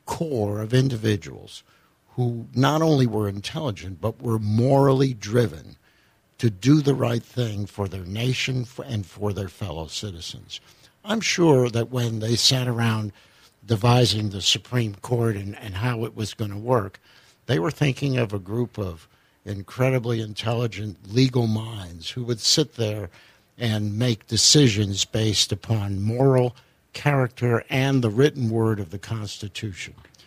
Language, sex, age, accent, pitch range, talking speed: English, male, 60-79, American, 105-130 Hz, 145 wpm